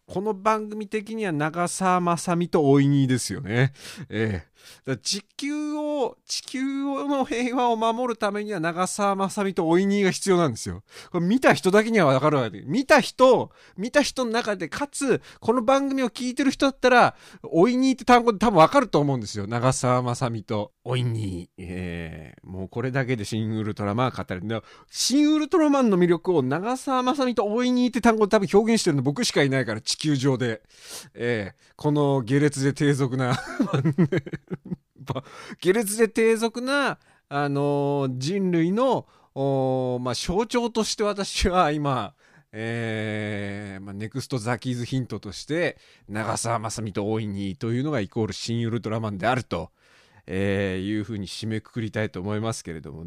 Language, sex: Japanese, male